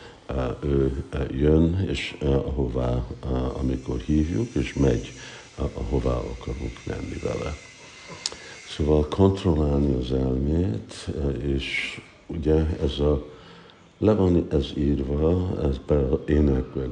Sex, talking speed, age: male, 95 wpm, 60-79